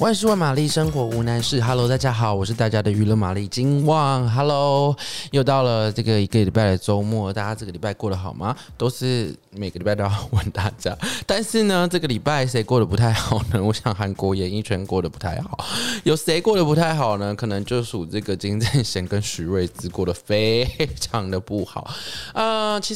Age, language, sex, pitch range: 20-39, Chinese, male, 100-130 Hz